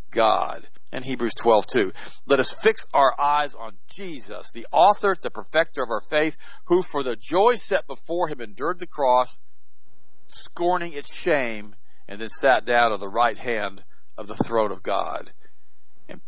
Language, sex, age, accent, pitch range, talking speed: English, male, 50-69, American, 105-140 Hz, 170 wpm